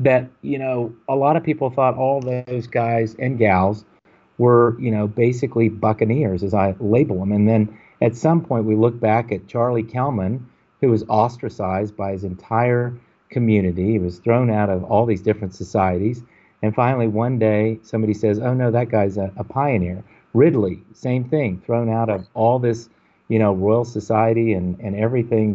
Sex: male